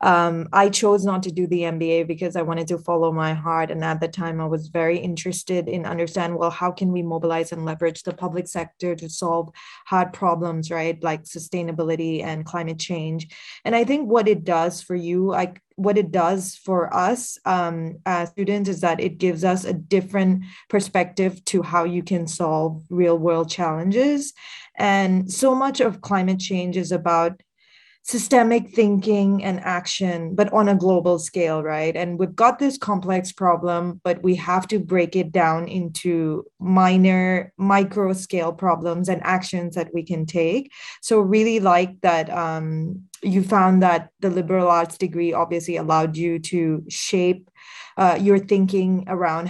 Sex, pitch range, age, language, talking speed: female, 170-195 Hz, 20-39, English, 170 wpm